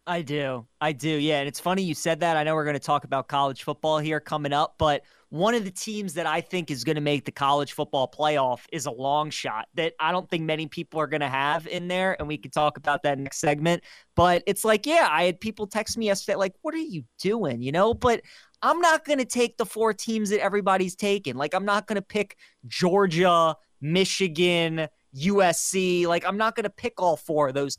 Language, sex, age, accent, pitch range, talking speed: English, male, 30-49, American, 145-195 Hz, 240 wpm